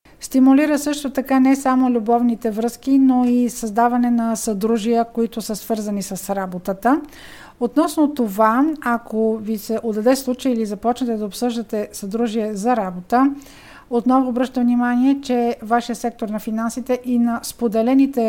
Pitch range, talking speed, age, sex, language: 225-265 Hz, 140 wpm, 50-69, female, Bulgarian